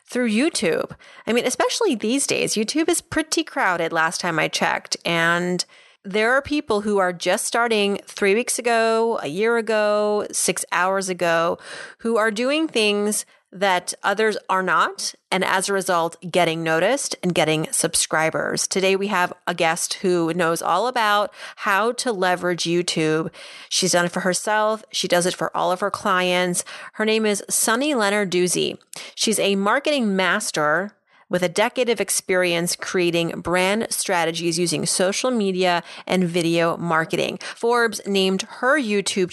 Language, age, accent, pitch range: English, 30-49, American, 175-220 Hz